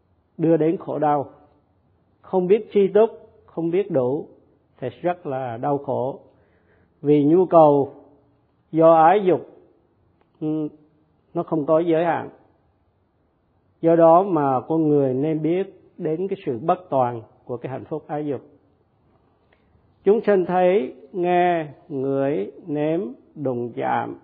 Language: Vietnamese